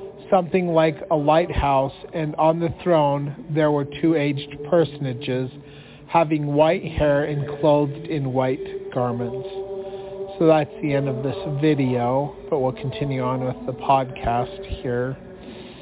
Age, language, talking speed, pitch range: 40-59, English, 135 wpm, 135-160 Hz